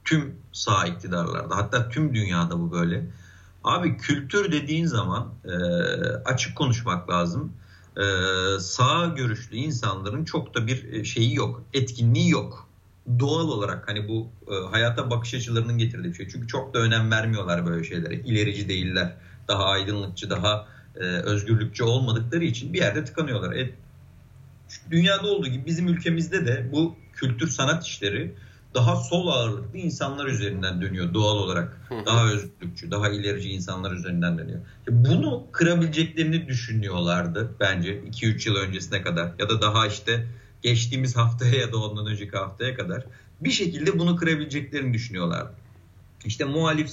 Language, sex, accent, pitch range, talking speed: Turkish, male, native, 100-130 Hz, 135 wpm